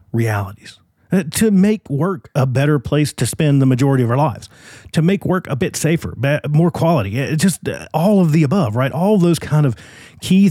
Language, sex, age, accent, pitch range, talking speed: English, male, 40-59, American, 115-150 Hz, 195 wpm